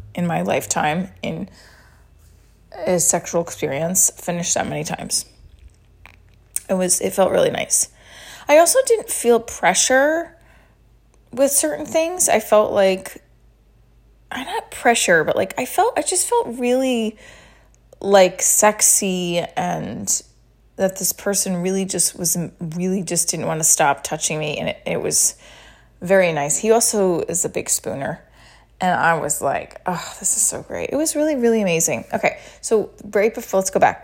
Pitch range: 170-240 Hz